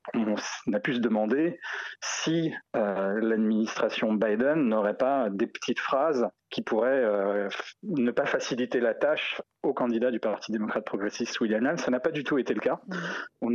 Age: 40-59